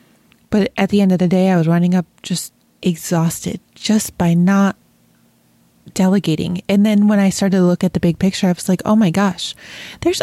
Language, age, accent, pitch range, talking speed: English, 30-49, American, 180-220 Hz, 205 wpm